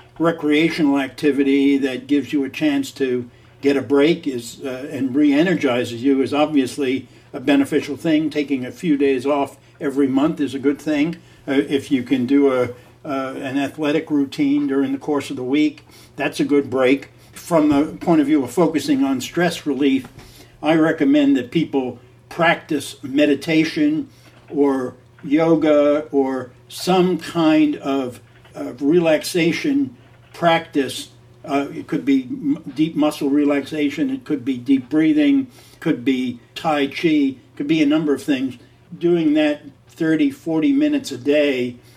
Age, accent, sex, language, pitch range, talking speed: 60-79, American, male, English, 135-175 Hz, 155 wpm